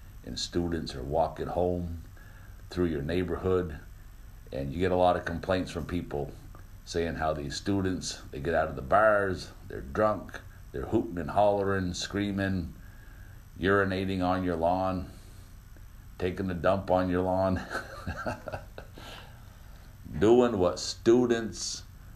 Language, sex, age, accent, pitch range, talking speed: English, male, 60-79, American, 90-105 Hz, 125 wpm